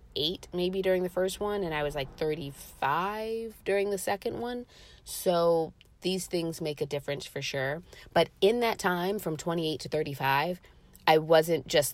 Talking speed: 170 wpm